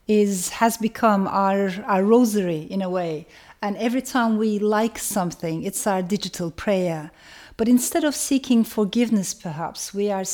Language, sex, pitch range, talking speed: English, female, 175-225 Hz, 155 wpm